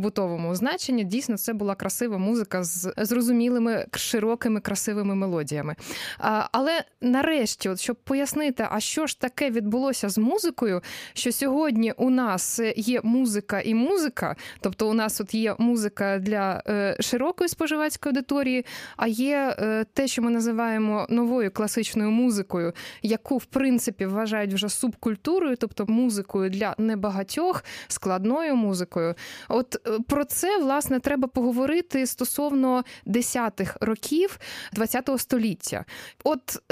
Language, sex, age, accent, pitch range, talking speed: Ukrainian, female, 20-39, native, 215-270 Hz, 130 wpm